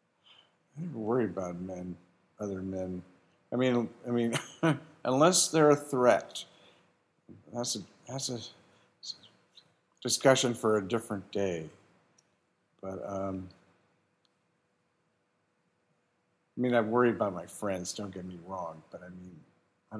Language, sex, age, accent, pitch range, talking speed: English, male, 50-69, American, 100-140 Hz, 130 wpm